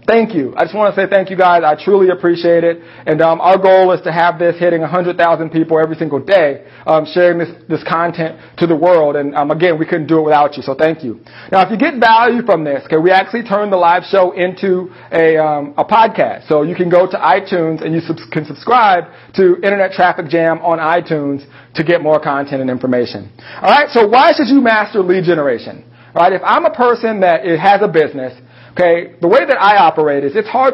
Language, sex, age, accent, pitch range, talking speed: English, male, 40-59, American, 155-200 Hz, 230 wpm